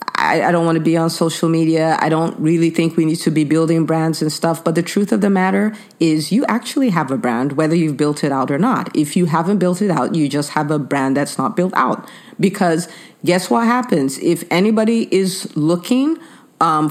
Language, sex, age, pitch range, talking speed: English, female, 40-59, 165-250 Hz, 225 wpm